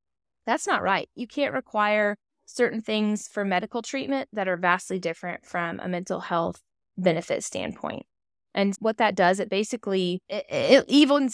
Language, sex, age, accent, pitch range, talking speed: English, female, 20-39, American, 175-210 Hz, 160 wpm